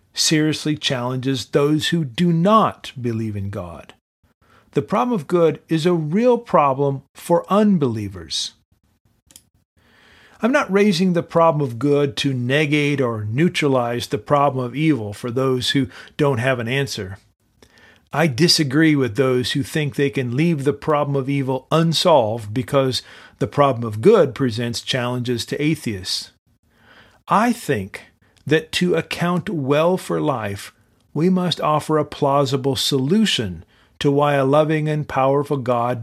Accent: American